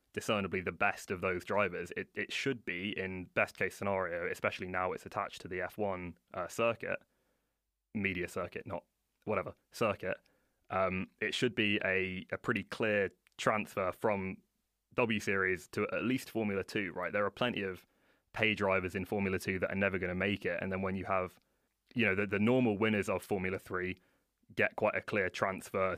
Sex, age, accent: male, 20-39, British